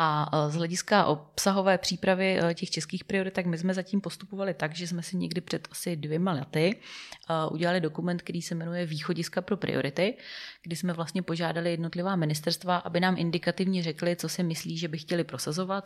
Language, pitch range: Czech, 155-180 Hz